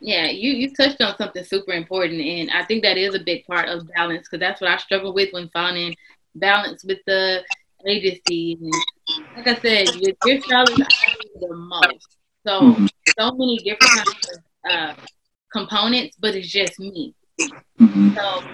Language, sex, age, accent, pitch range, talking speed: English, female, 20-39, American, 180-225 Hz, 170 wpm